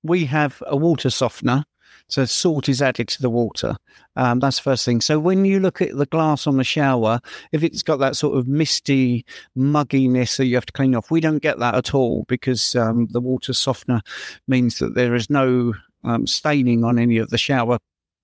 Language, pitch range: English, 125-165 Hz